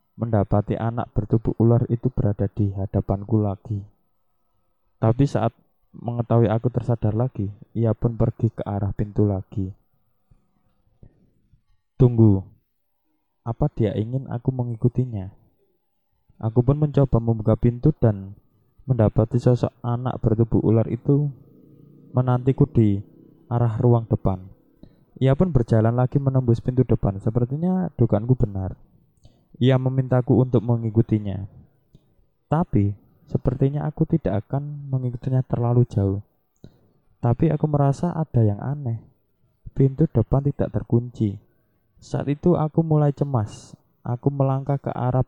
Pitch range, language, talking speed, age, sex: 110-135 Hz, Indonesian, 115 wpm, 20-39, male